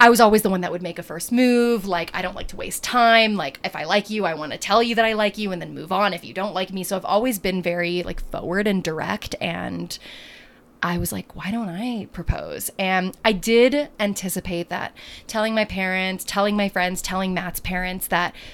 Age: 20-39